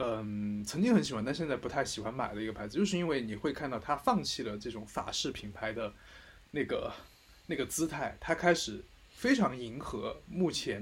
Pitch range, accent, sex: 110-165 Hz, native, male